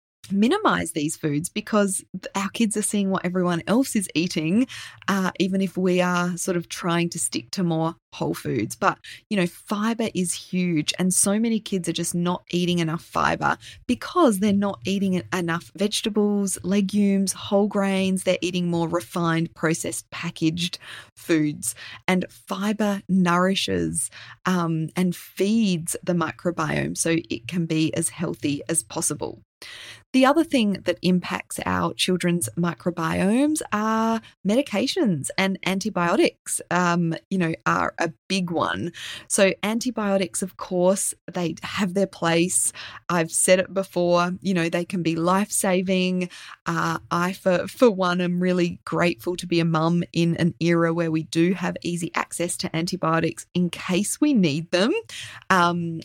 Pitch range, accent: 170-200 Hz, Australian